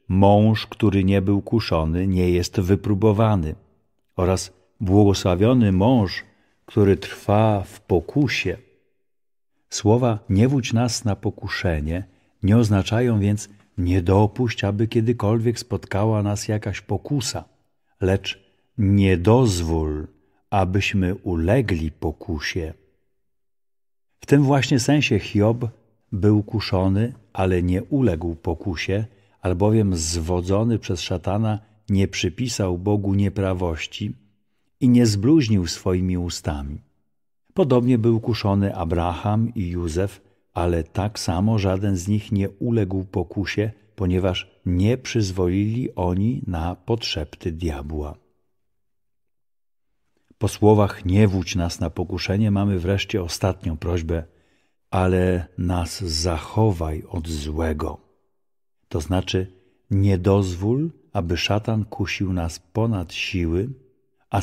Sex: male